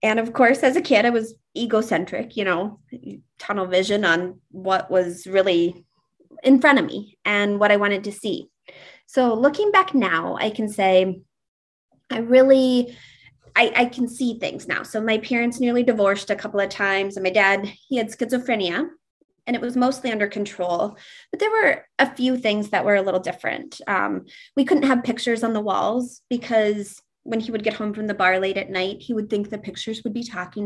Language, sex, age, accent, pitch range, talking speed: English, female, 20-39, American, 200-260 Hz, 200 wpm